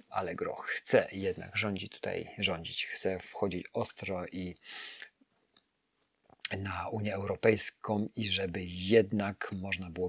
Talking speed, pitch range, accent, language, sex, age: 115 wpm, 105-130 Hz, native, Polish, male, 30-49